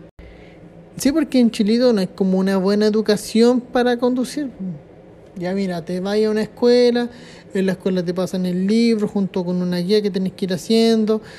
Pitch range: 190-225 Hz